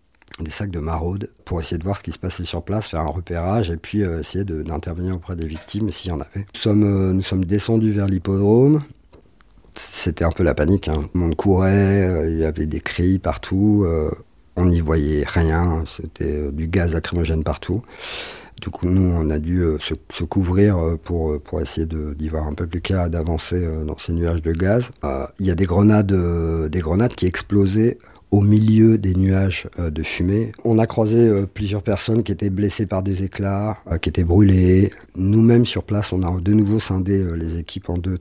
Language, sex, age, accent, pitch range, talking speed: French, male, 50-69, French, 85-100 Hz, 215 wpm